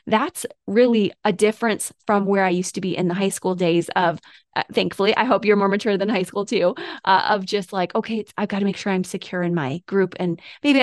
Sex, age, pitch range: female, 20-39, 180-220 Hz